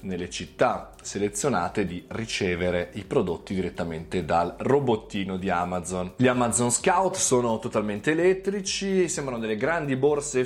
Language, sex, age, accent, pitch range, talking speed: Italian, male, 20-39, native, 105-130 Hz, 125 wpm